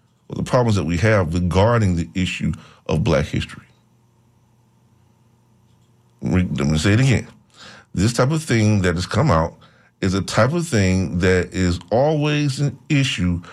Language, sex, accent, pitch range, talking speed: English, male, American, 90-115 Hz, 155 wpm